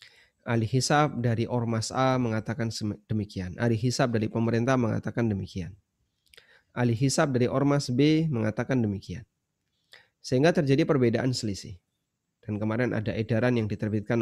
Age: 30-49